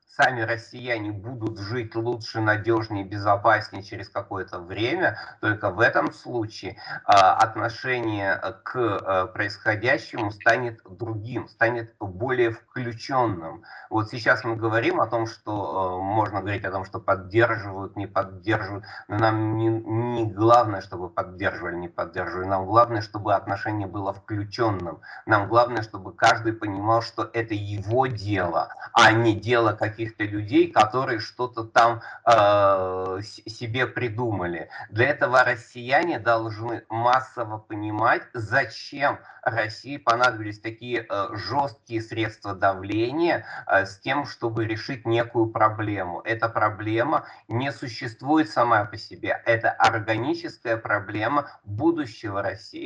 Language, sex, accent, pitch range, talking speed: Russian, male, native, 105-120 Hz, 125 wpm